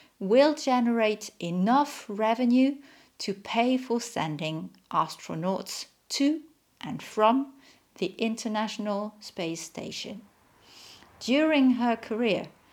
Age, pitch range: 50-69, 180-235 Hz